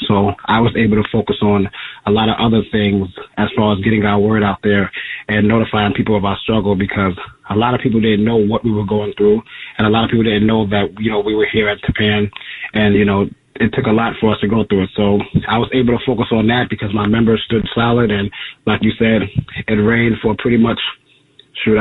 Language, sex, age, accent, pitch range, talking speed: English, male, 30-49, American, 105-115 Hz, 245 wpm